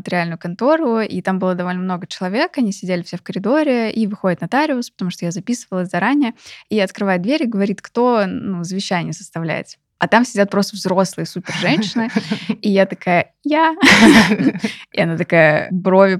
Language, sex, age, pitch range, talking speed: Russian, female, 20-39, 175-220 Hz, 165 wpm